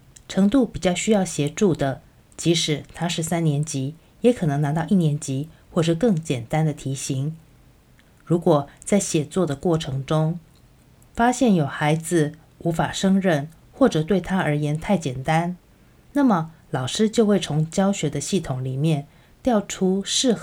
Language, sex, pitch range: Chinese, female, 145-190 Hz